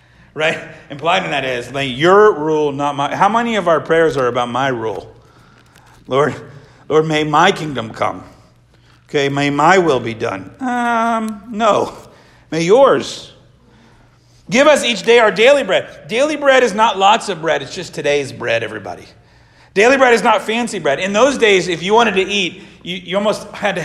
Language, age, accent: English, 40-59, American